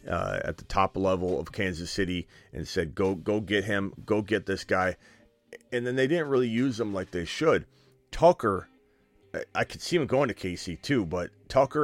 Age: 30-49